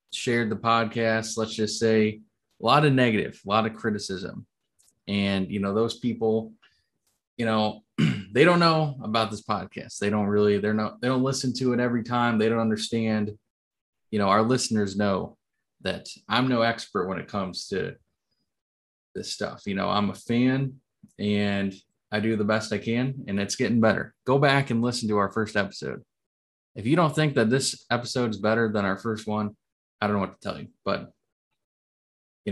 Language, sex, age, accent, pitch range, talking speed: English, male, 20-39, American, 105-125 Hz, 190 wpm